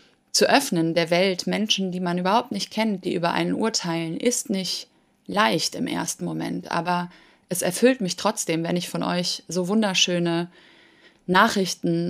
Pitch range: 175-220 Hz